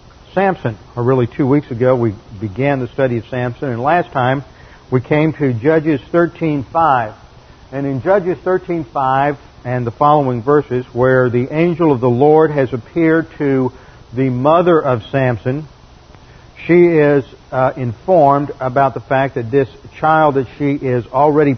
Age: 50-69